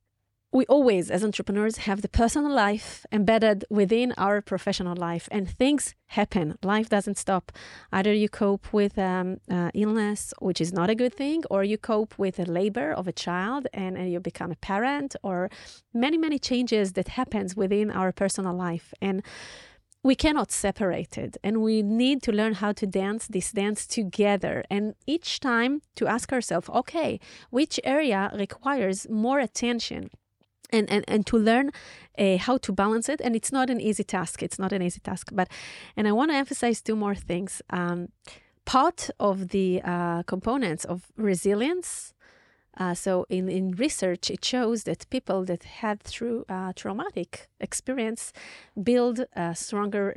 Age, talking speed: 30-49, 170 wpm